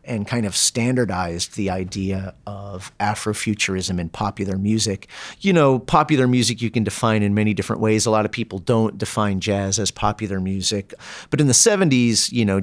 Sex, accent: male, American